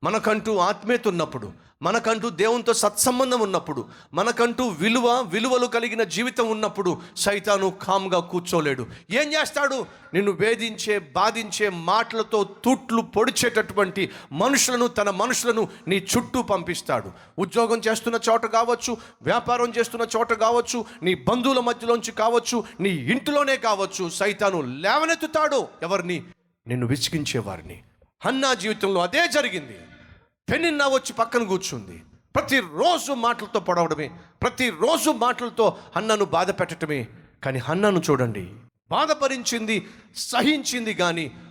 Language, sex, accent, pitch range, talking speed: Telugu, male, native, 140-230 Hz, 105 wpm